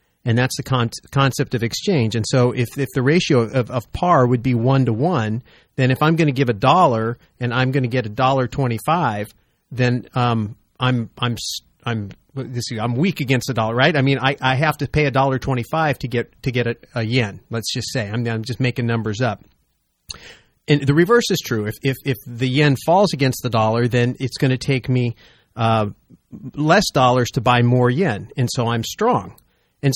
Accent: American